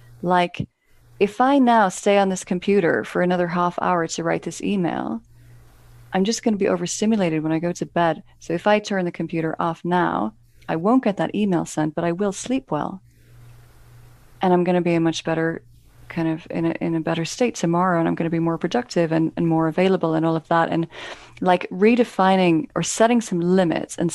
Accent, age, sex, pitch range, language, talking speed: American, 30-49, female, 155-195 Hz, English, 210 wpm